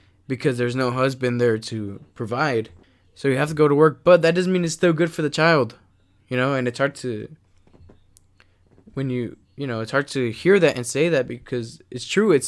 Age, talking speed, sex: 20-39, 220 wpm, male